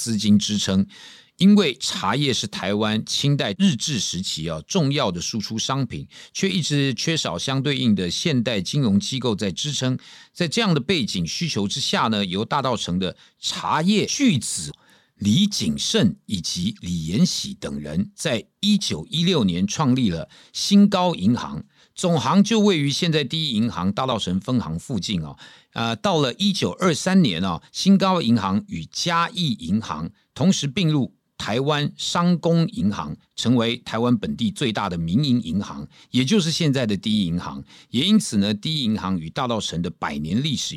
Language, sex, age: Chinese, male, 50-69